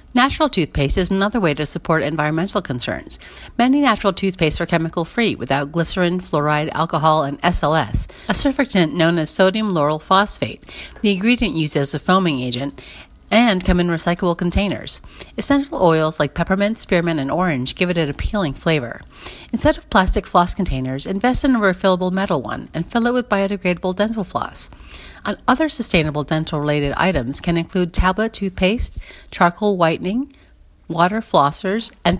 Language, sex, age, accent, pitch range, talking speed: English, female, 40-59, American, 155-205 Hz, 155 wpm